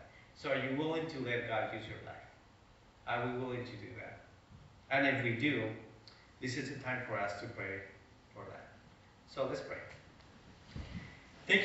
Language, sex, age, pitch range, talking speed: English, male, 30-49, 115-140 Hz, 175 wpm